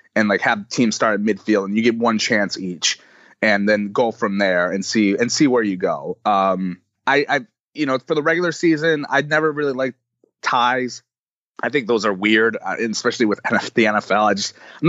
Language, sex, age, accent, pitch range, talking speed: English, male, 30-49, American, 105-140 Hz, 215 wpm